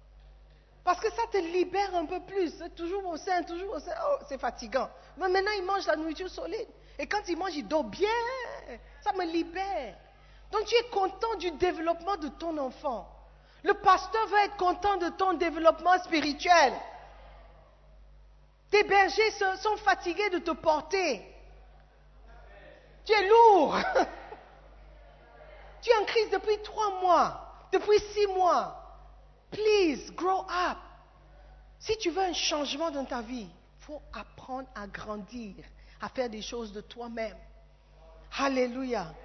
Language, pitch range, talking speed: French, 260-380 Hz, 145 wpm